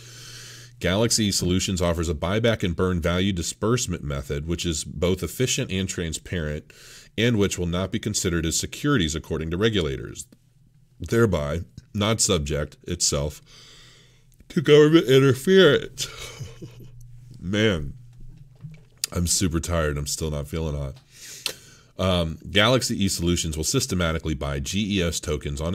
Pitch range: 80-115 Hz